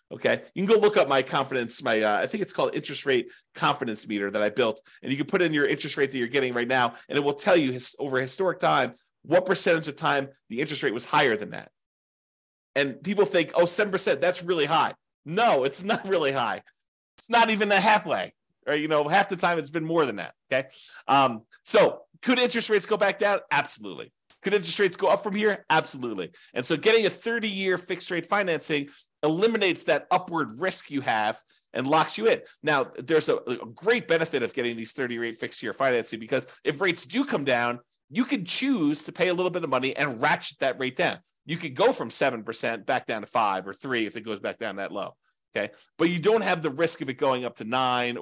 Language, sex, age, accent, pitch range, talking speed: English, male, 30-49, American, 135-205 Hz, 235 wpm